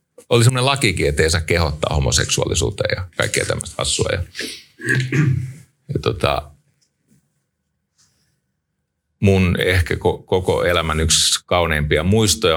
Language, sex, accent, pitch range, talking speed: Finnish, male, native, 90-135 Hz, 110 wpm